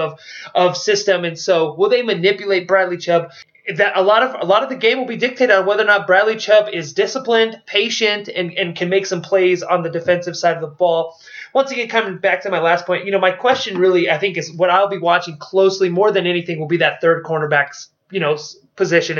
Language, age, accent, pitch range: English, 20-39, American, 165-195 Hz